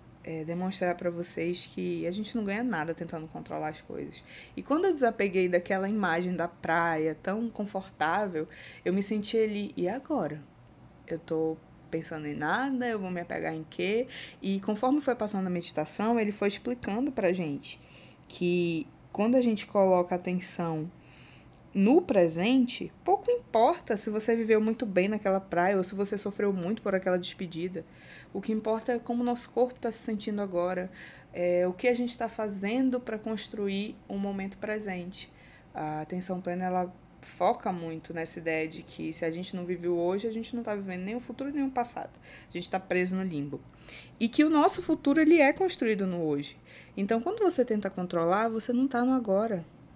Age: 20-39